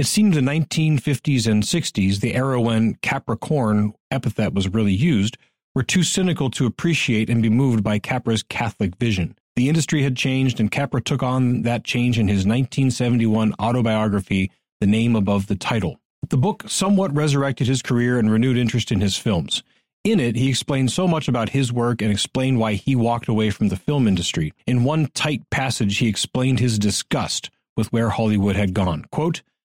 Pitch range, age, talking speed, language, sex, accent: 110-145 Hz, 40-59, 190 wpm, English, male, American